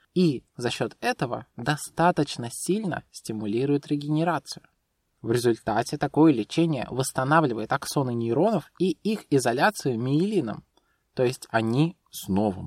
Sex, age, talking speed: male, 20-39, 110 wpm